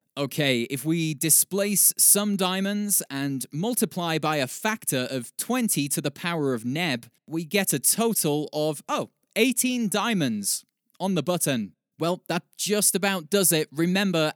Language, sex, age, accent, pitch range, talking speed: English, male, 20-39, British, 145-205 Hz, 150 wpm